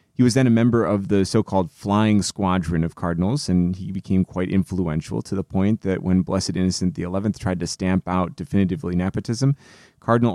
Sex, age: male, 30-49